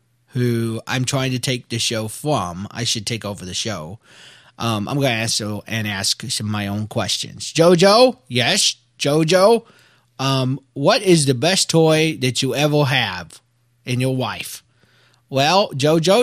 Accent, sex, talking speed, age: American, male, 165 wpm, 30-49